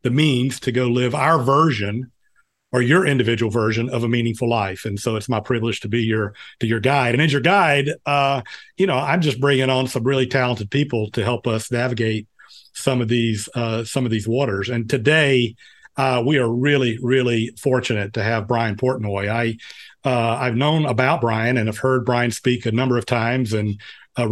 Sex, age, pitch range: male, 50-69, 120-140 Hz